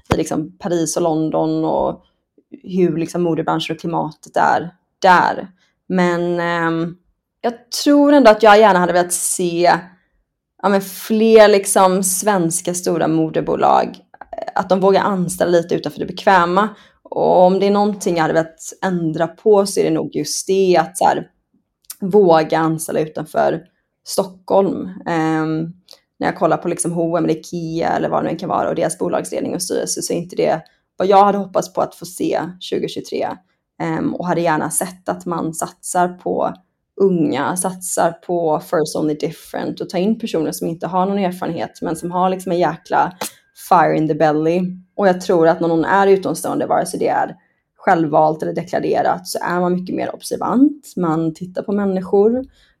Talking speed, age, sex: 170 wpm, 20-39, female